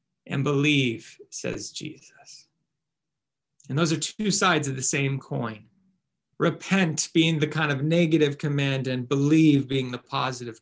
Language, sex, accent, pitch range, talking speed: English, male, American, 140-180 Hz, 140 wpm